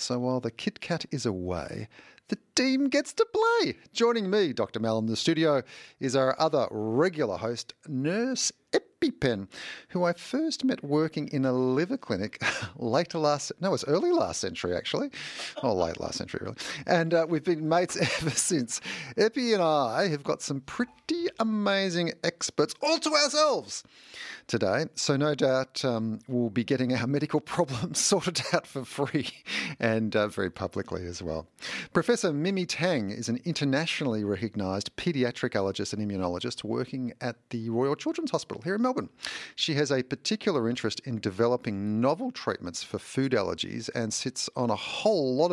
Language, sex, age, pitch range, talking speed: English, male, 40-59, 110-170 Hz, 165 wpm